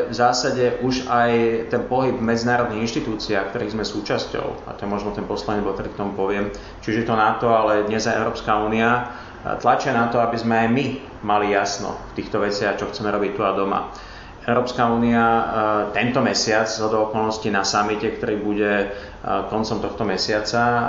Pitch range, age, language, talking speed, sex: 105-115 Hz, 30-49, Slovak, 165 wpm, male